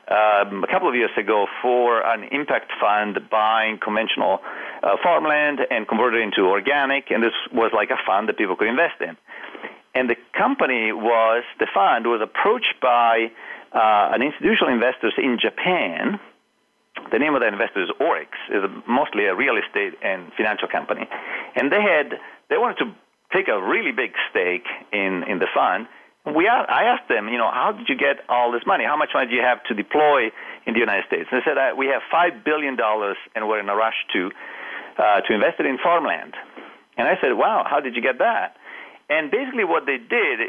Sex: male